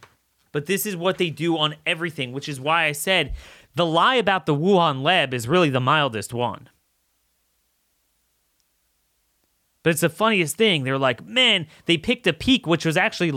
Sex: male